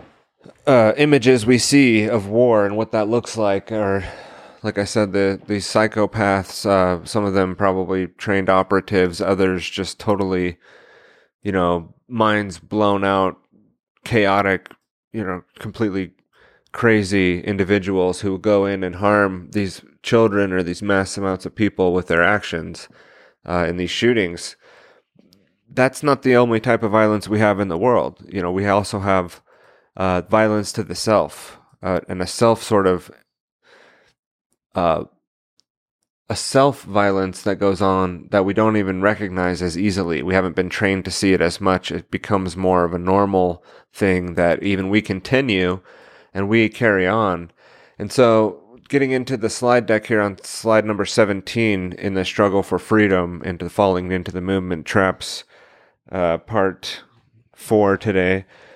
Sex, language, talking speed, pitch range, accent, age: male, English, 155 wpm, 95-110 Hz, American, 30-49